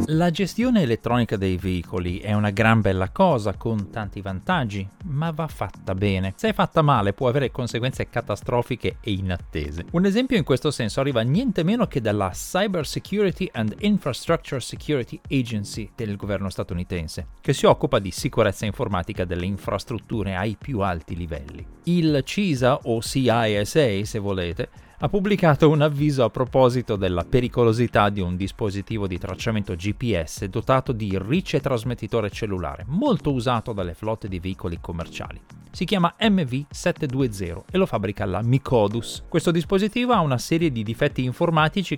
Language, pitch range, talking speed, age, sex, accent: Italian, 100-150 Hz, 150 wpm, 30-49, male, native